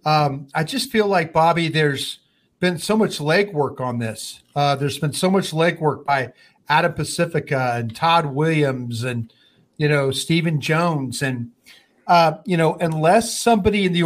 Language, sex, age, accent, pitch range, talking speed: English, male, 40-59, American, 145-170 Hz, 160 wpm